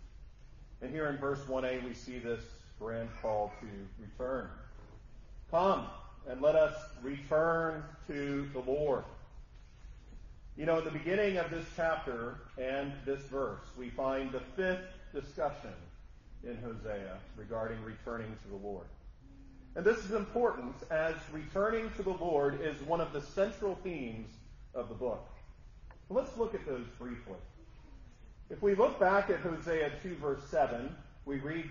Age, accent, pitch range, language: 40-59, American, 125-185 Hz, English